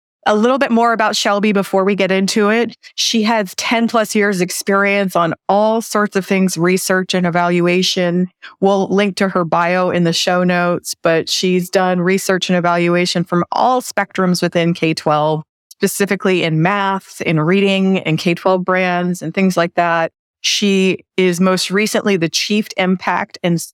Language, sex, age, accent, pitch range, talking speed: English, female, 30-49, American, 180-220 Hz, 165 wpm